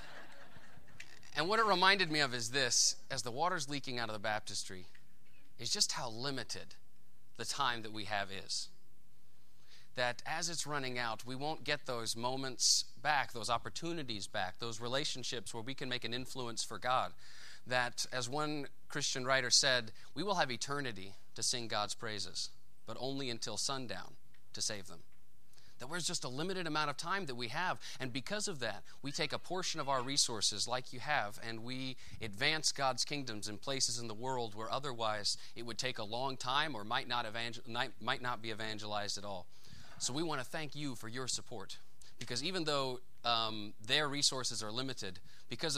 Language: English